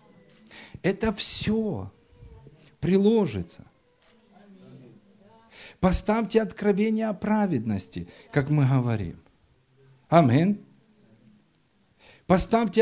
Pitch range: 130-205 Hz